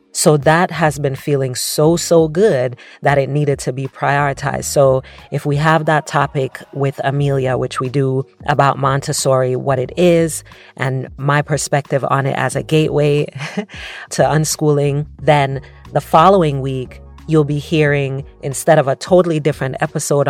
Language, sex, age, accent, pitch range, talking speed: English, female, 30-49, American, 135-150 Hz, 155 wpm